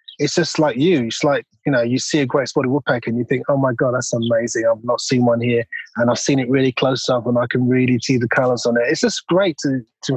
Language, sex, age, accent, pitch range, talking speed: English, male, 30-49, British, 125-160 Hz, 285 wpm